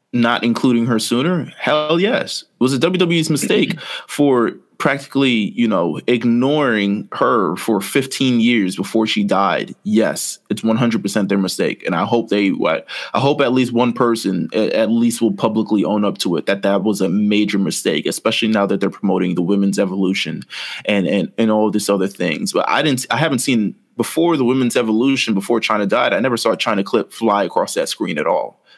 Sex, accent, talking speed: male, American, 190 wpm